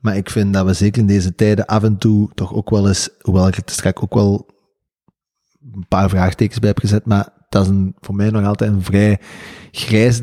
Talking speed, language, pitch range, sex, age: 230 wpm, Dutch, 95-115 Hz, male, 20-39